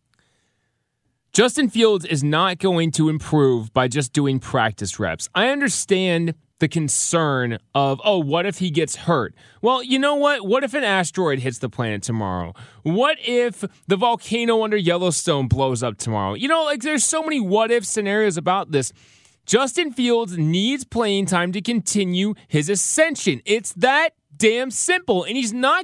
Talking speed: 165 wpm